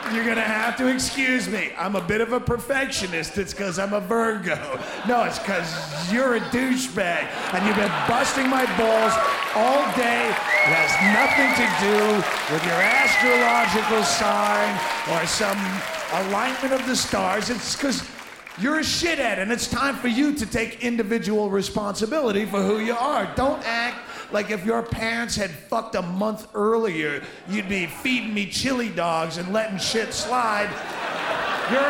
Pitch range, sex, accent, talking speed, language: 205-260 Hz, male, American, 165 wpm, English